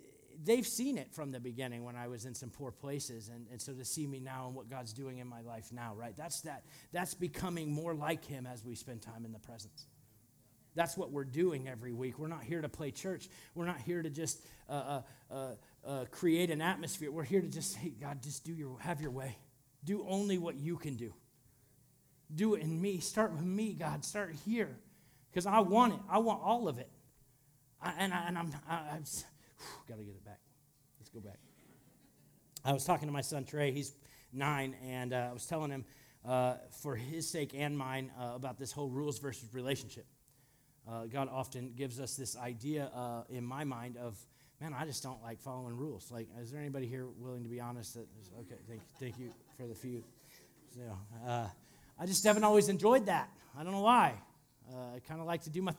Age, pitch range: 40-59, 125-160 Hz